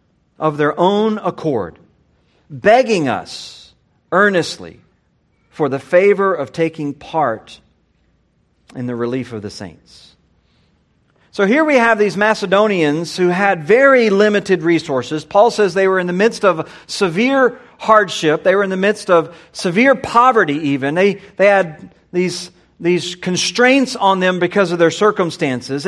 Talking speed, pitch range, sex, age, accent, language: 140 wpm, 155-210 Hz, male, 40-59, American, English